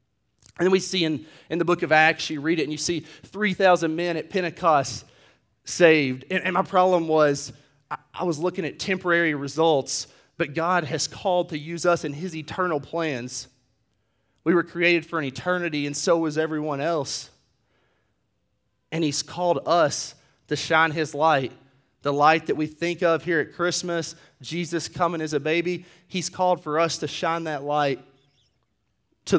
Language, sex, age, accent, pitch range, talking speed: English, male, 30-49, American, 130-160 Hz, 175 wpm